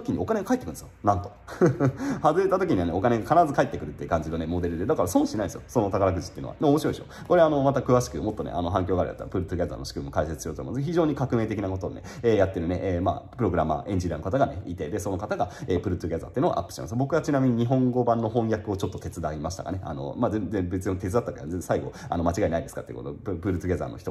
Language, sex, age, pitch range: Japanese, male, 30-49, 90-135 Hz